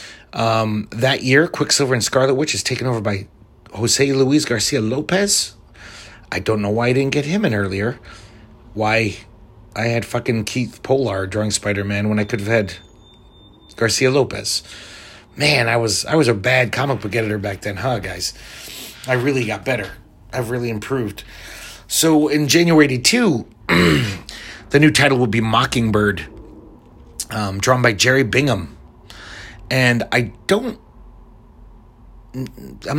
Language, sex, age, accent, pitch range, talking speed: English, male, 30-49, American, 105-125 Hz, 145 wpm